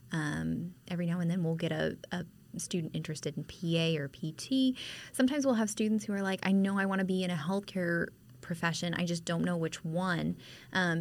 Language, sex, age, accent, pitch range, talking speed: English, female, 20-39, American, 160-190 Hz, 215 wpm